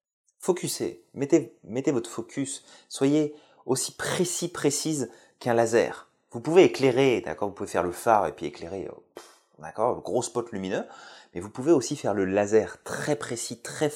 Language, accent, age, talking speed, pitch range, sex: French, French, 30-49, 170 wpm, 100-145 Hz, male